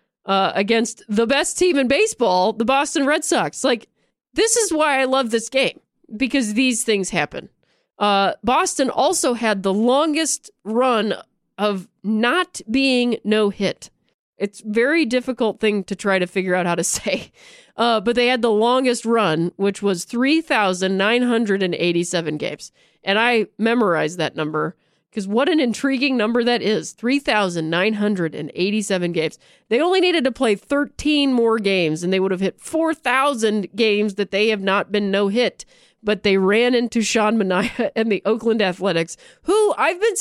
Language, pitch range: English, 205-275 Hz